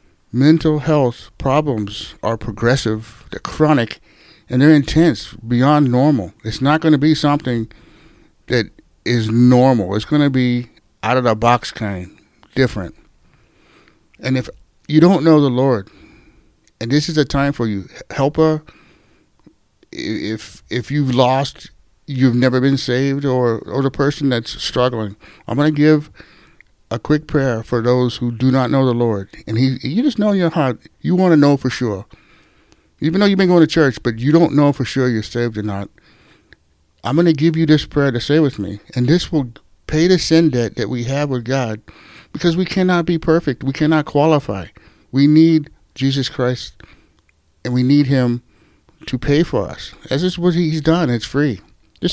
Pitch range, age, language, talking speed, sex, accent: 115-150 Hz, 60-79, English, 175 wpm, male, American